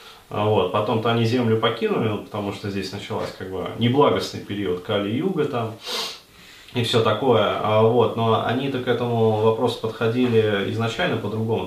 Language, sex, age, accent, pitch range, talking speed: Russian, male, 20-39, native, 110-125 Hz, 145 wpm